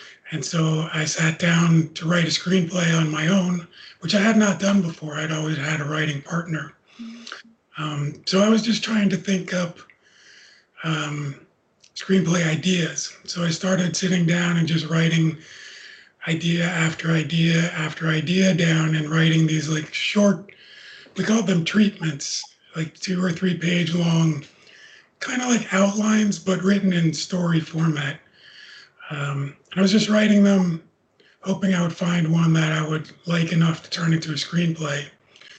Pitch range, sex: 160-185 Hz, male